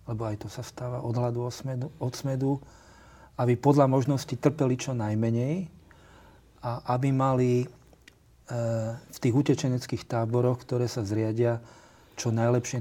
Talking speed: 115 wpm